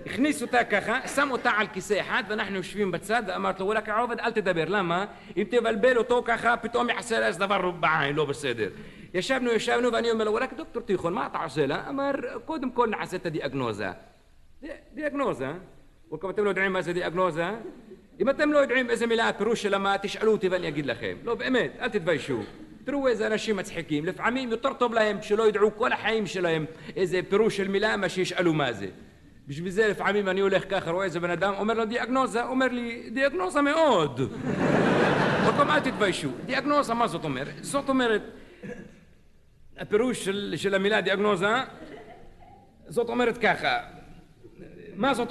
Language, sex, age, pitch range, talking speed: Hebrew, male, 50-69, 185-240 Hz, 145 wpm